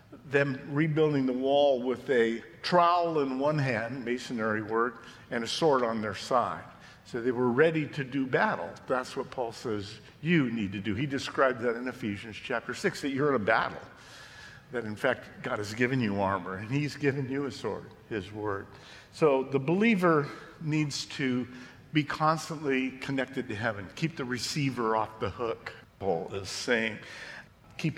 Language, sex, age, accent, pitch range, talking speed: English, male, 50-69, American, 115-150 Hz, 175 wpm